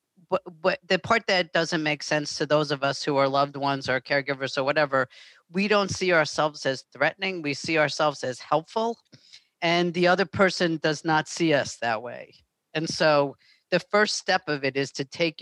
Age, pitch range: 40-59, 140-175 Hz